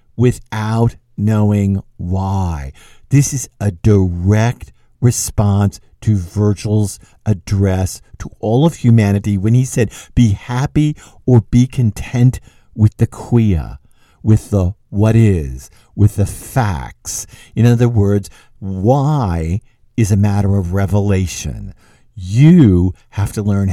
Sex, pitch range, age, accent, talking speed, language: male, 100-140 Hz, 50-69, American, 115 wpm, English